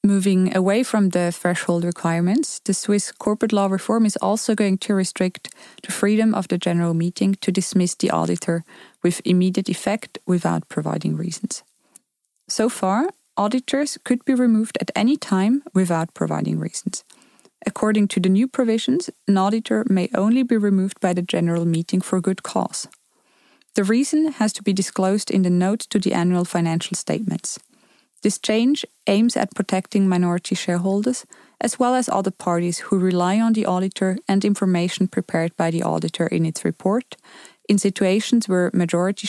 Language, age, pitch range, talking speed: English, 20-39, 180-220 Hz, 160 wpm